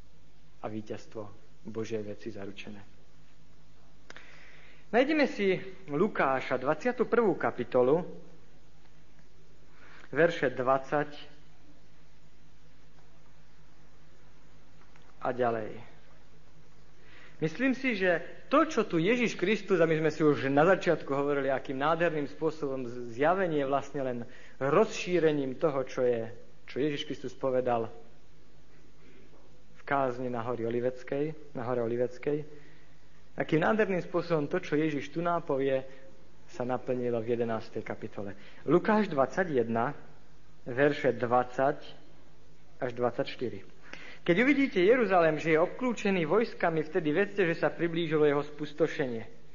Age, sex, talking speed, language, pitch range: 50-69, male, 100 wpm, Slovak, 130-170 Hz